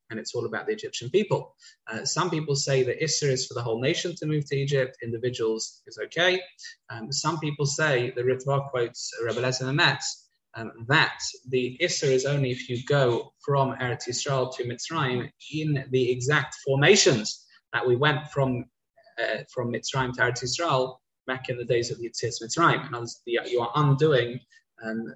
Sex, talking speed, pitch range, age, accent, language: male, 175 wpm, 125-170 Hz, 20-39, British, English